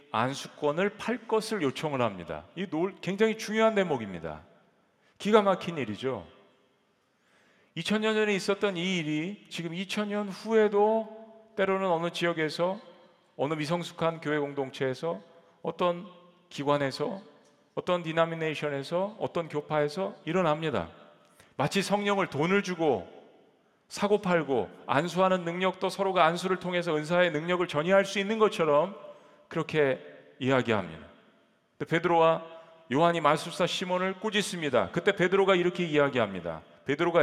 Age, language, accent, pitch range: 40-59, Korean, native, 145-195 Hz